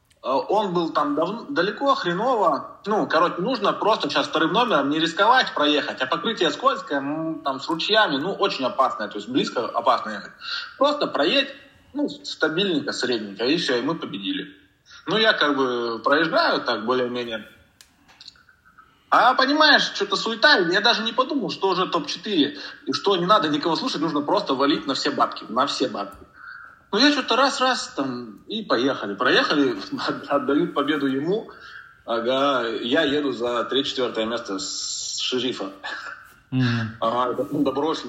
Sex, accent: male, native